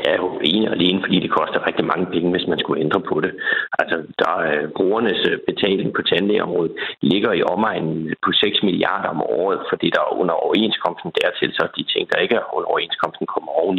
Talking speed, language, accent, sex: 185 wpm, Danish, native, male